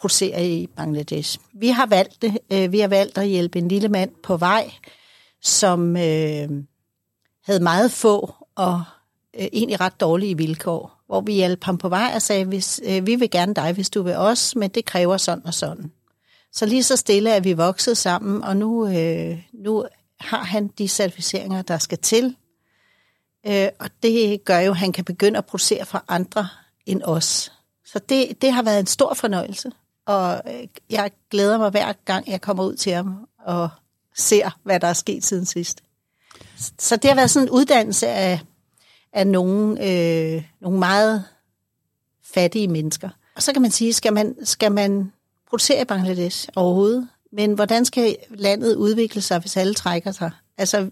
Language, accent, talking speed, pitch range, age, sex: Danish, native, 180 wpm, 175-215 Hz, 60-79, female